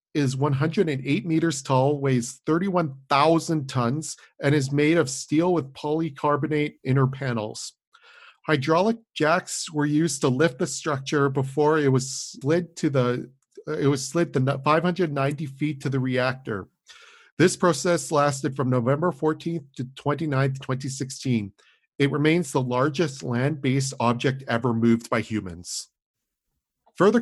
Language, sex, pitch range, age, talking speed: English, male, 130-155 Hz, 40-59, 130 wpm